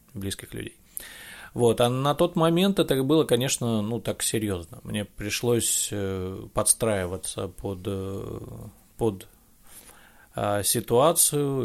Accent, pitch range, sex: native, 100-120 Hz, male